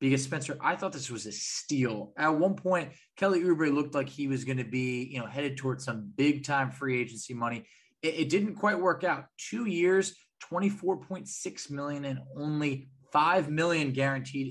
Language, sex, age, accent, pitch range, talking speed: English, male, 20-39, American, 130-155 Hz, 200 wpm